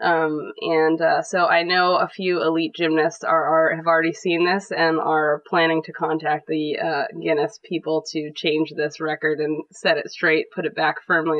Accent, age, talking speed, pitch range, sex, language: American, 20-39, 195 wpm, 155-185 Hz, female, English